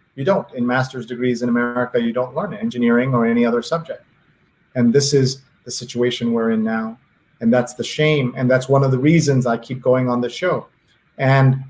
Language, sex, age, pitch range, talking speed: English, male, 30-49, 125-140 Hz, 205 wpm